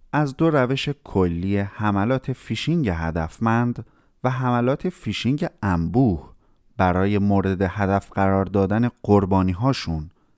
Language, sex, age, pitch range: Persian, male, 30-49, 90-135 Hz